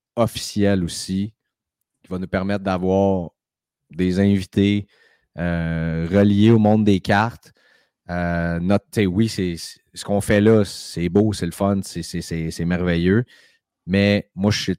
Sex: male